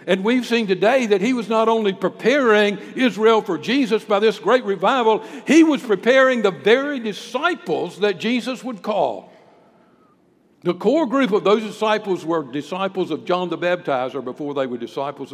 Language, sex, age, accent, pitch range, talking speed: English, male, 60-79, American, 140-210 Hz, 170 wpm